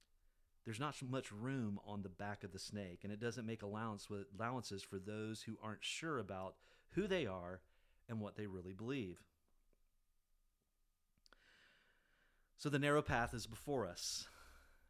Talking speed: 155 wpm